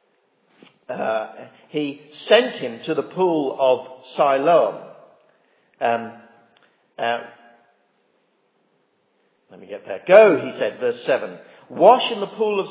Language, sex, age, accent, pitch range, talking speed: English, male, 50-69, British, 115-155 Hz, 120 wpm